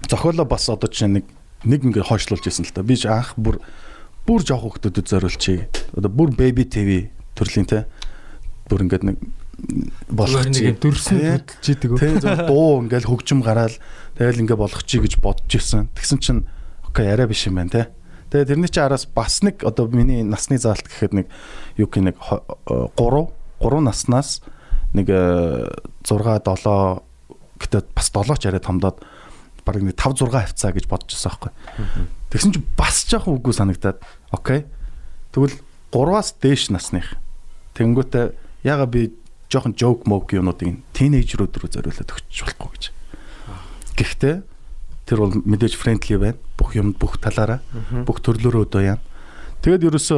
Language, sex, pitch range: Korean, male, 100-130 Hz